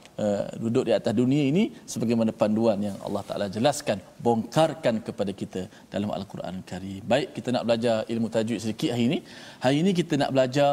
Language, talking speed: Malayalam, 185 wpm